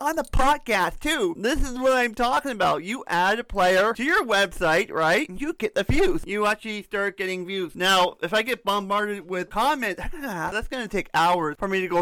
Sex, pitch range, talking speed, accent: male, 170-205 Hz, 210 wpm, American